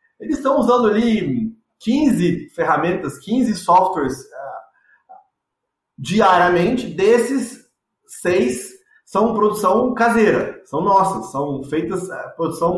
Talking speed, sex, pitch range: 90 wpm, male, 180-250 Hz